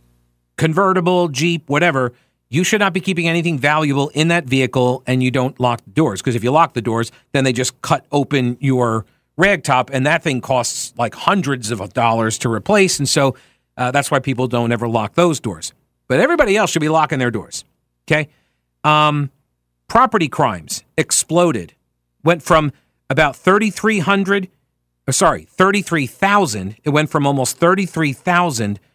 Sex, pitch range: male, 115-165 Hz